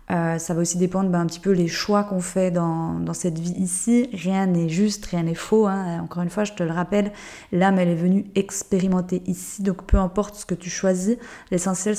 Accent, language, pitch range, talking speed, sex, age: French, French, 180-210 Hz, 230 wpm, female, 20-39